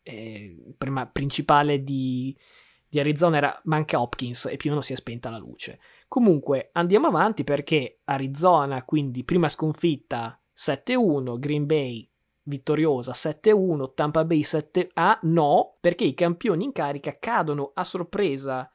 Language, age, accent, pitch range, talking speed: Italian, 20-39, native, 135-165 Hz, 145 wpm